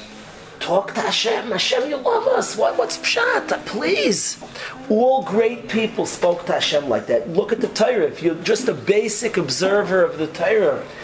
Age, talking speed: 40-59, 170 wpm